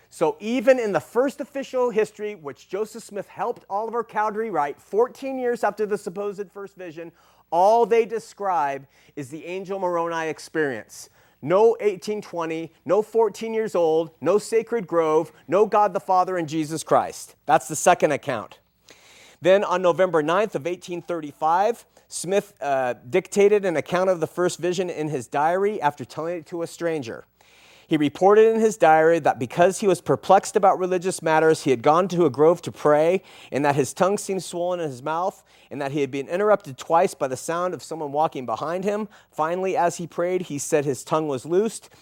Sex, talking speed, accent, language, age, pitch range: male, 185 wpm, American, English, 40-59, 155-205 Hz